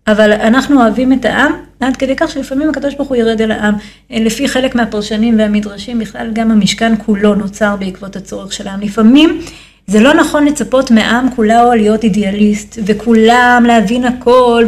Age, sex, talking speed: 30-49, female, 165 wpm